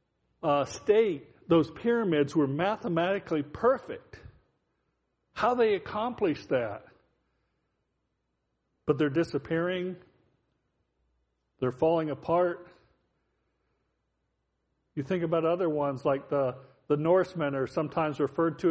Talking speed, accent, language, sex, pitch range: 95 wpm, American, English, male, 145-180 Hz